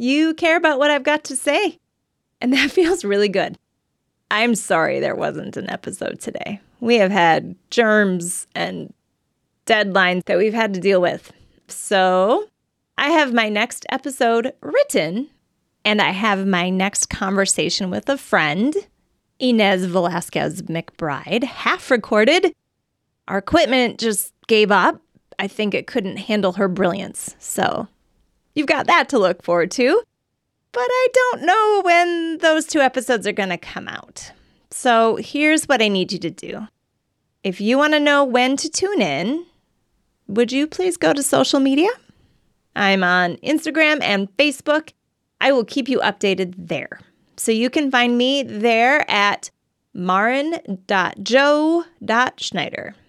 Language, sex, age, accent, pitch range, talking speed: English, female, 30-49, American, 195-300 Hz, 145 wpm